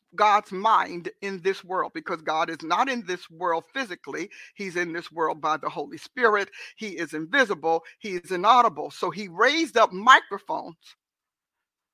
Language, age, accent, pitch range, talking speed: English, 50-69, American, 180-240 Hz, 160 wpm